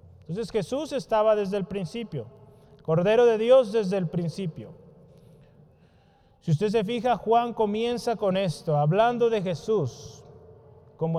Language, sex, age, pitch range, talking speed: Spanish, male, 30-49, 150-215 Hz, 130 wpm